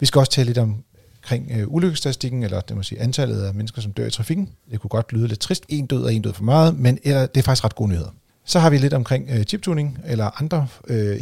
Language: Danish